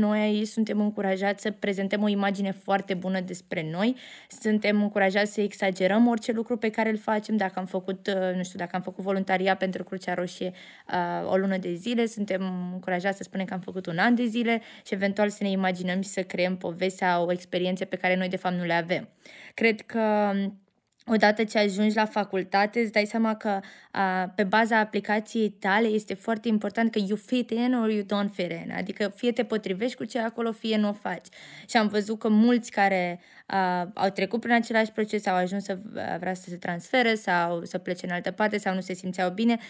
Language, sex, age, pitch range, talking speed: Romanian, female, 20-39, 190-230 Hz, 205 wpm